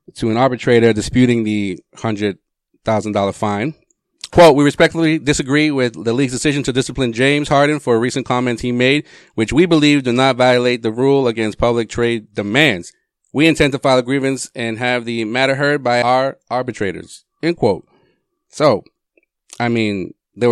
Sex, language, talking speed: male, English, 175 wpm